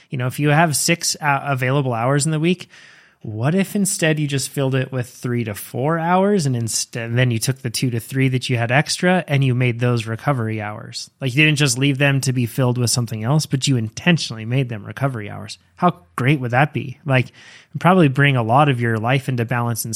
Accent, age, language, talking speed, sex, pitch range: American, 20-39, English, 235 wpm, male, 125-150 Hz